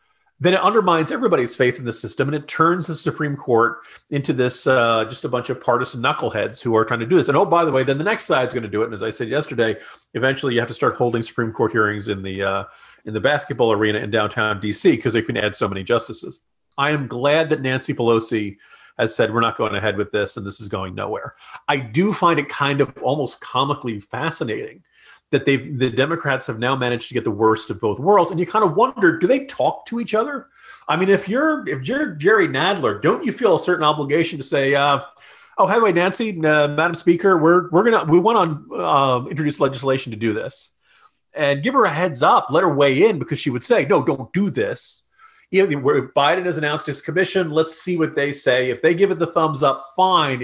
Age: 40-59